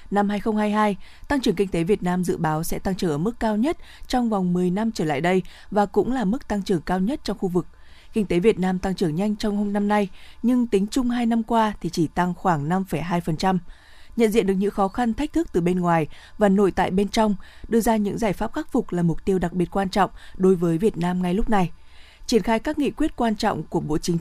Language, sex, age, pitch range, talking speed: Vietnamese, female, 20-39, 180-225 Hz, 260 wpm